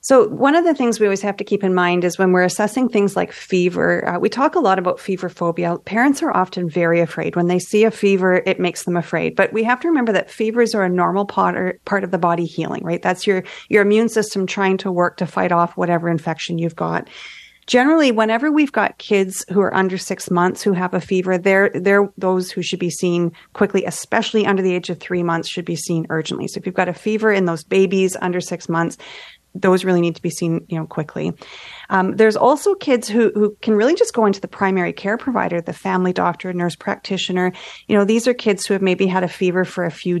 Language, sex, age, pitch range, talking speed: English, female, 40-59, 175-210 Hz, 240 wpm